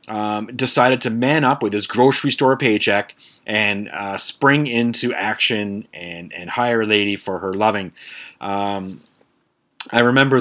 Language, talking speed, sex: English, 150 wpm, male